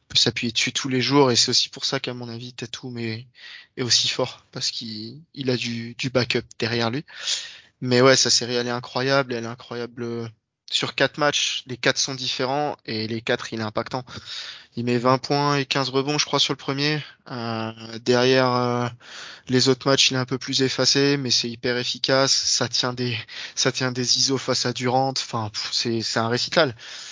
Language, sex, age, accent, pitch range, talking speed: French, male, 20-39, French, 120-135 Hz, 210 wpm